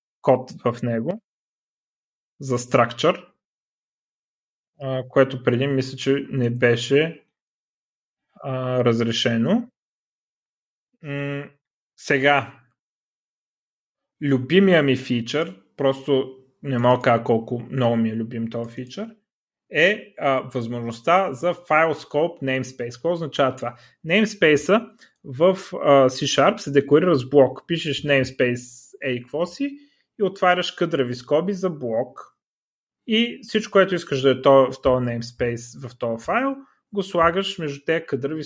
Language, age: Bulgarian, 30-49